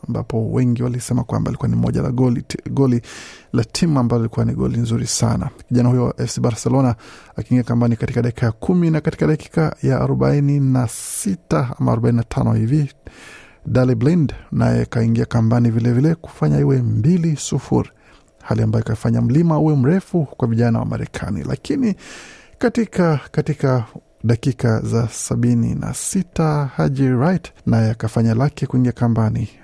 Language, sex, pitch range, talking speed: Swahili, male, 115-140 Hz, 150 wpm